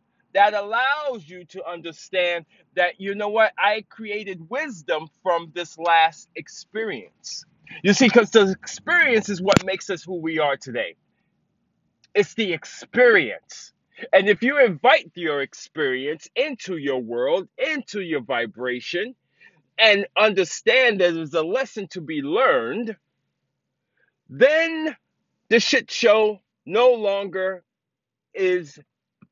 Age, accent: 30-49, American